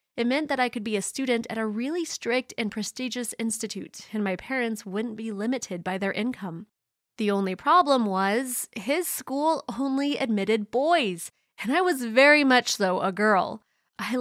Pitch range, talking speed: 200-250 Hz, 175 wpm